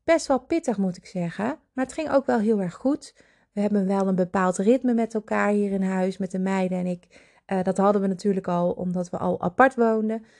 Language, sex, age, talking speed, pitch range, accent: Dutch, female, 30-49, 235 wpm, 190-235 Hz, Dutch